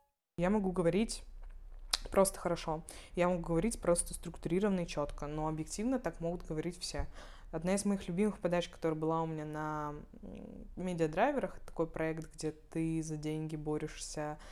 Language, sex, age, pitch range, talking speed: Russian, female, 20-39, 155-180 Hz, 150 wpm